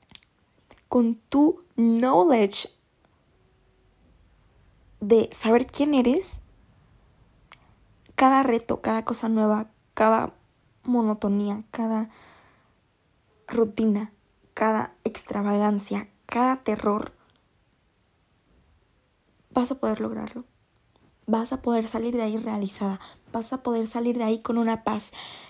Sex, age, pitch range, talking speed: female, 20-39, 205-245 Hz, 95 wpm